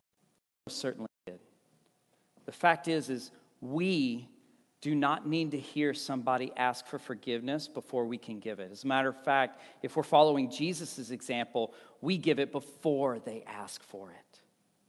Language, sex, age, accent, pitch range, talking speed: English, male, 40-59, American, 130-195 Hz, 155 wpm